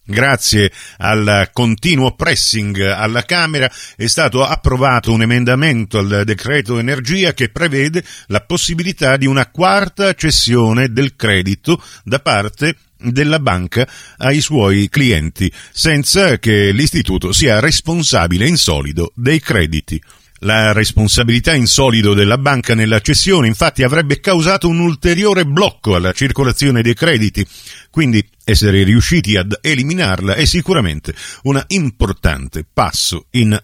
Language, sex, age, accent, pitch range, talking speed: Italian, male, 50-69, native, 105-150 Hz, 125 wpm